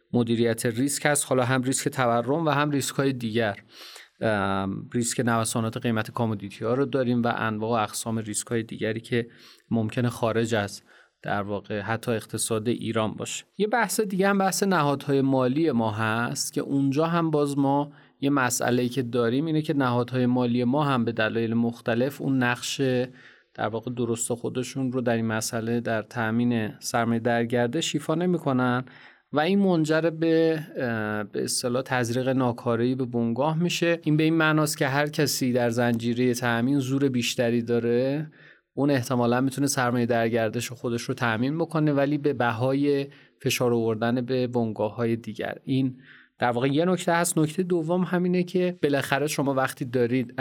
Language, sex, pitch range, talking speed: Persian, male, 120-145 Hz, 155 wpm